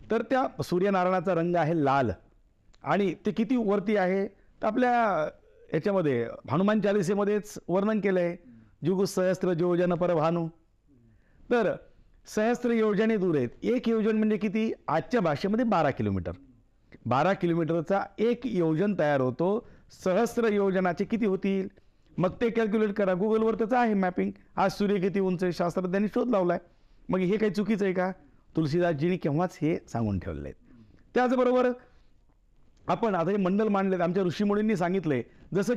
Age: 60-79